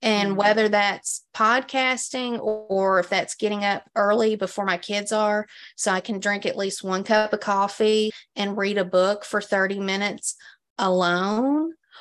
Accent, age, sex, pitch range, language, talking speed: American, 30-49, female, 200-235 Hz, English, 160 wpm